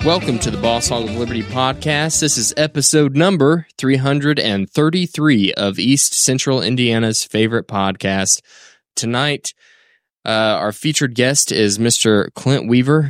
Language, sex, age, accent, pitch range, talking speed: English, male, 20-39, American, 105-130 Hz, 130 wpm